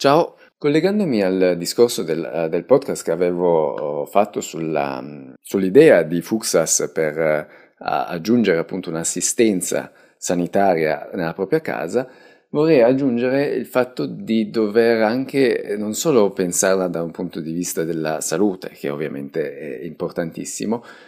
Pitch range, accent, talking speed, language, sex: 85-120 Hz, native, 120 wpm, Italian, male